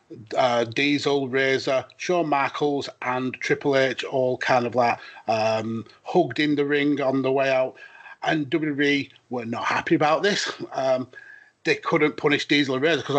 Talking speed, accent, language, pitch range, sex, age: 165 wpm, British, English, 125-145 Hz, male, 30-49